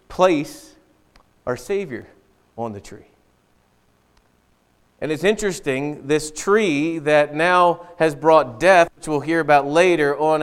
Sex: male